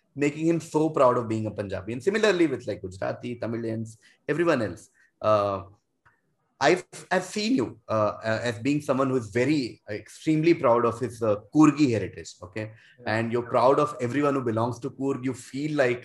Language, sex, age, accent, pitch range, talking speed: English, male, 20-39, Indian, 115-150 Hz, 180 wpm